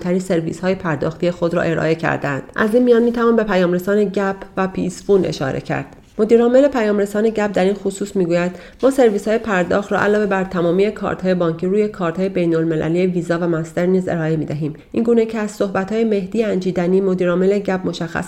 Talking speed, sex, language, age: 195 wpm, female, Persian, 40-59